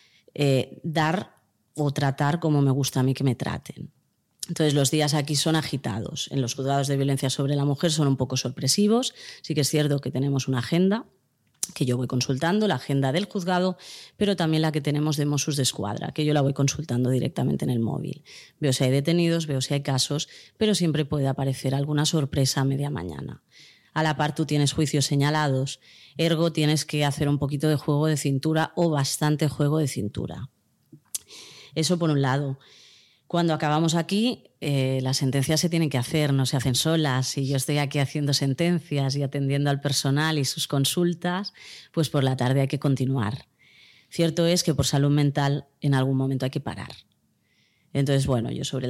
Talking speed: 195 wpm